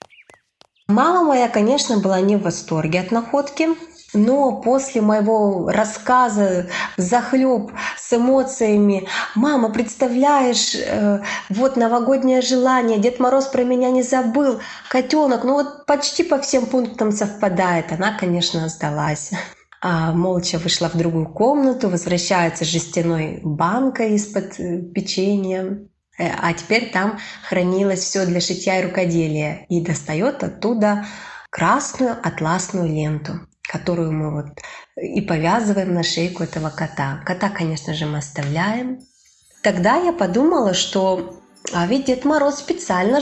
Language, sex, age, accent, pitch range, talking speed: Russian, female, 20-39, native, 175-250 Hz, 120 wpm